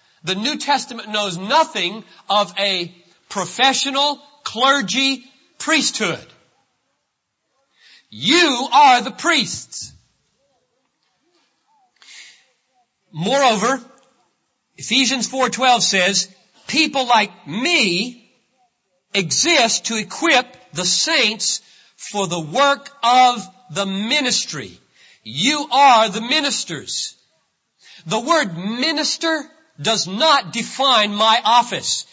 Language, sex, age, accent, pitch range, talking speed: English, male, 50-69, American, 195-265 Hz, 80 wpm